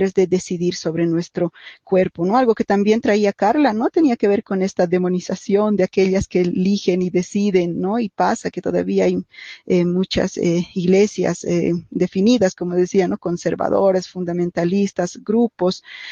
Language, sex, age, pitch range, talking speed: Spanish, female, 40-59, 180-205 Hz, 155 wpm